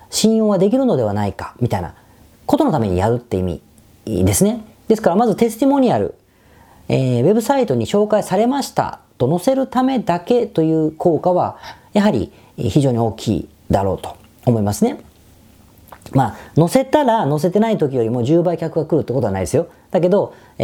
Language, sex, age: Japanese, female, 40-59